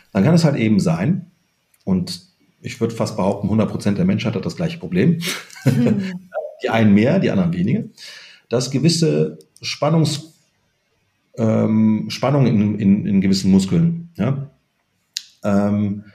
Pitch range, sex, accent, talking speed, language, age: 110-170 Hz, male, German, 130 wpm, German, 40-59